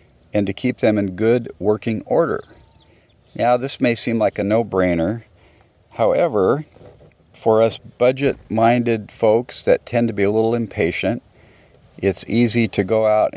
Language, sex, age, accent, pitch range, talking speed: English, male, 50-69, American, 90-115 Hz, 145 wpm